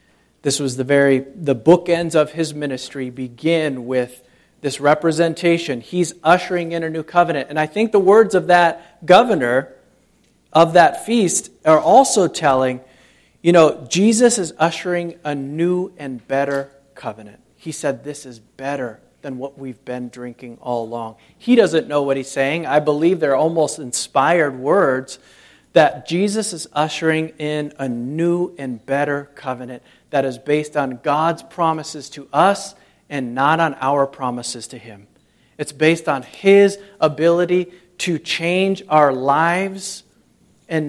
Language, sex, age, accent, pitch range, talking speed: English, male, 40-59, American, 135-170 Hz, 150 wpm